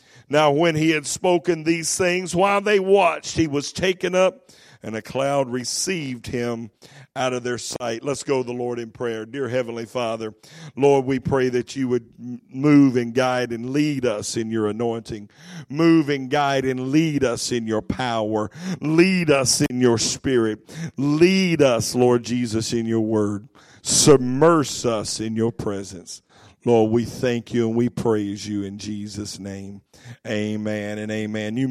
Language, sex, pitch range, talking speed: English, male, 115-180 Hz, 170 wpm